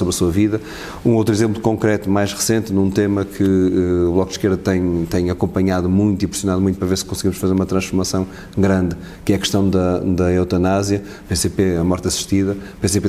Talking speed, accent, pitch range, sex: 205 wpm, Portuguese, 95-105 Hz, male